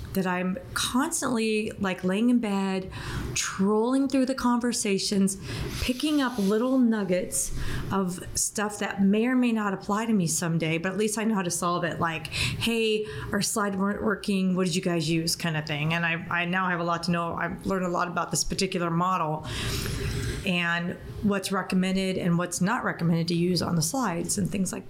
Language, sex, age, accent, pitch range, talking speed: English, female, 30-49, American, 175-220 Hz, 195 wpm